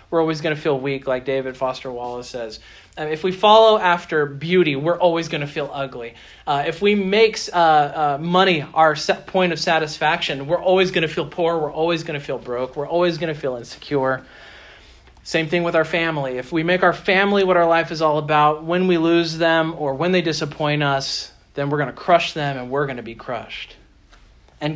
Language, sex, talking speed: English, male, 215 wpm